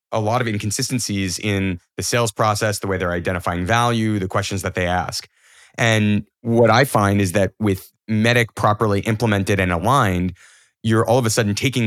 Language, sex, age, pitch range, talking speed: English, male, 30-49, 100-120 Hz, 180 wpm